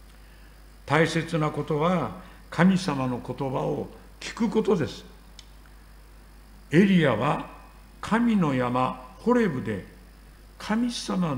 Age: 60-79